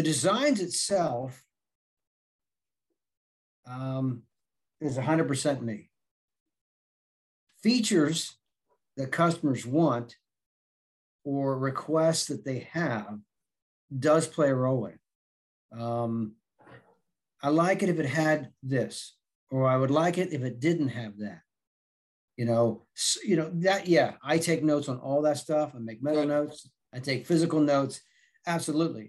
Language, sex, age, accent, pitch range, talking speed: English, male, 40-59, American, 125-165 Hz, 130 wpm